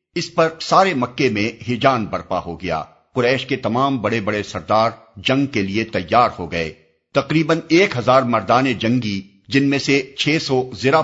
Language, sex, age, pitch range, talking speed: Urdu, male, 50-69, 100-135 Hz, 165 wpm